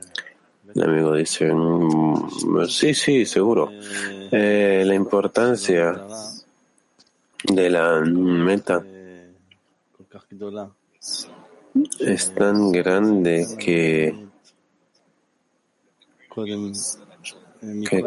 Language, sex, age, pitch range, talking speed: Spanish, male, 30-49, 90-105 Hz, 55 wpm